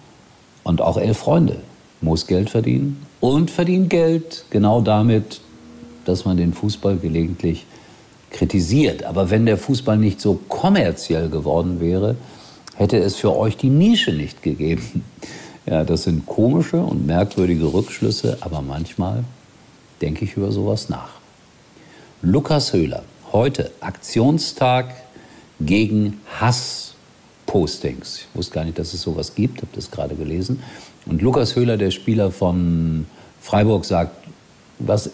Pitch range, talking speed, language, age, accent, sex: 85-120 Hz, 130 wpm, German, 50-69, German, male